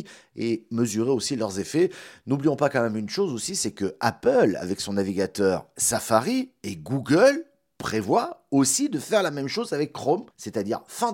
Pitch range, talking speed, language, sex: 125-195 Hz, 170 wpm, French, male